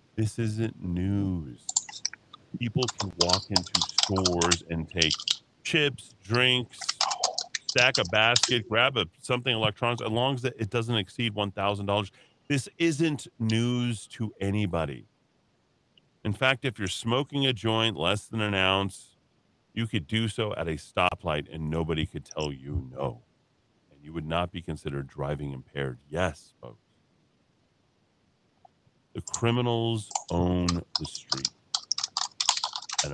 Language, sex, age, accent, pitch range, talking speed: English, male, 40-59, American, 95-130 Hz, 125 wpm